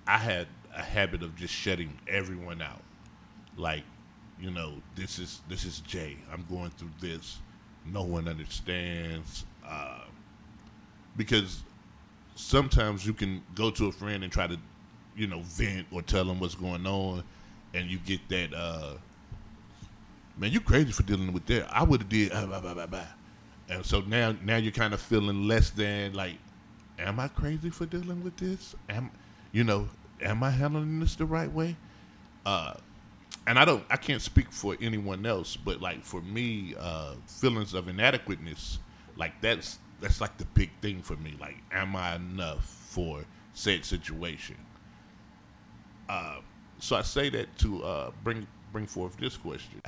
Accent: American